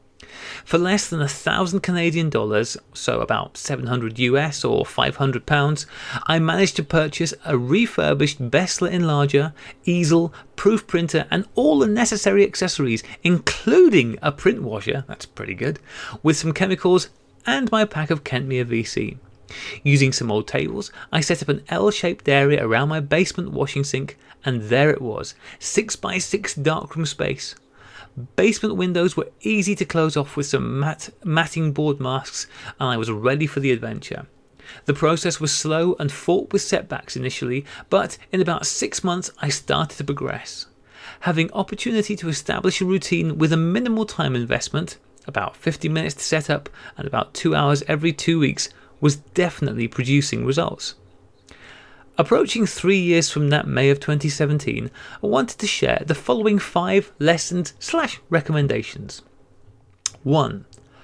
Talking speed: 145 wpm